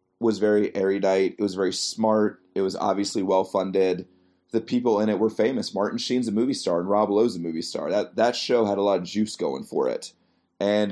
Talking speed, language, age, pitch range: 220 wpm, English, 30-49, 95-110 Hz